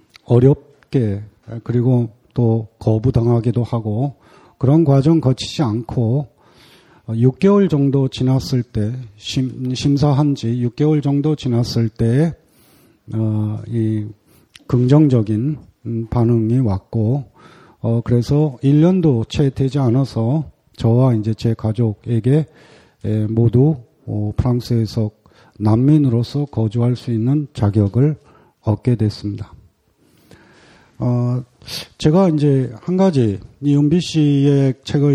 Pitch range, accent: 115-145 Hz, native